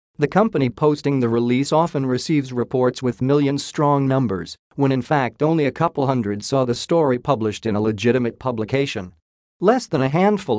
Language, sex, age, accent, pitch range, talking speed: English, male, 50-69, American, 115-145 Hz, 175 wpm